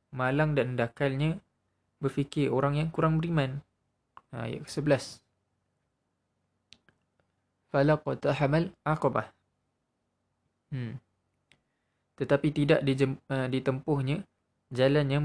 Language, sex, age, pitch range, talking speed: Malay, male, 20-39, 120-145 Hz, 85 wpm